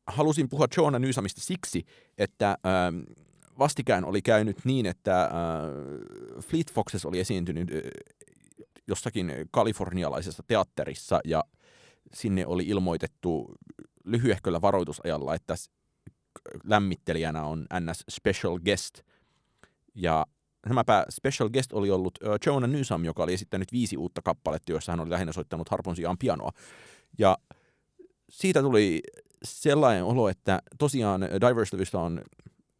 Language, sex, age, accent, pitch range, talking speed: Finnish, male, 30-49, native, 90-130 Hz, 110 wpm